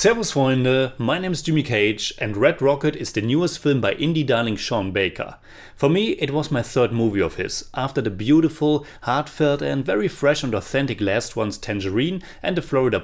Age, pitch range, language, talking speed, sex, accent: 30-49, 110-155 Hz, English, 200 wpm, male, German